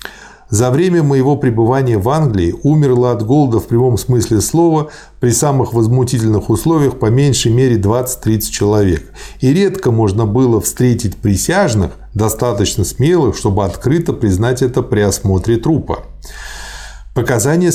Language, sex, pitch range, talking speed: Russian, male, 105-135 Hz, 130 wpm